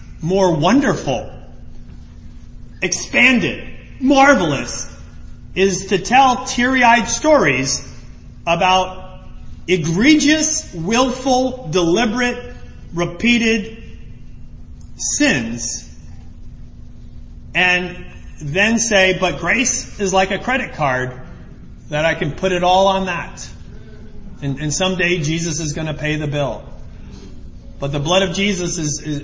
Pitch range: 165-255 Hz